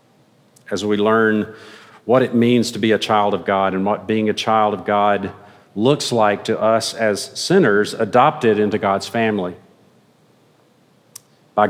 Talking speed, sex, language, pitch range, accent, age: 155 wpm, male, English, 105-125 Hz, American, 50-69